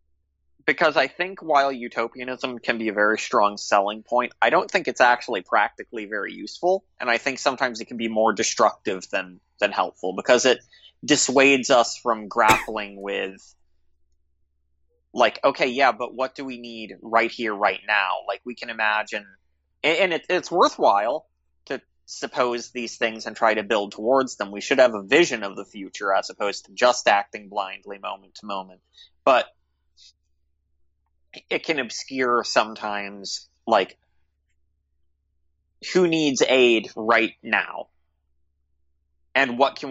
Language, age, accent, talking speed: English, 20-39, American, 150 wpm